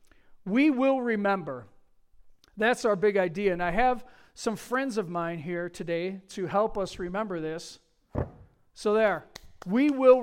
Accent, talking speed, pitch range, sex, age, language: American, 145 wpm, 170-225 Hz, male, 50-69, English